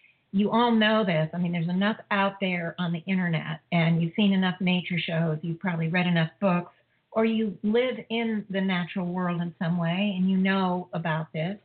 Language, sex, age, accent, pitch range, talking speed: English, female, 50-69, American, 175-215 Hz, 200 wpm